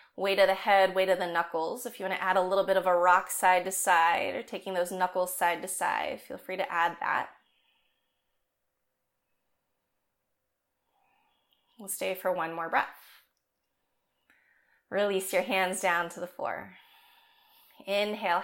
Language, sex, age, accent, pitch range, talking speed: English, female, 20-39, American, 185-250 Hz, 155 wpm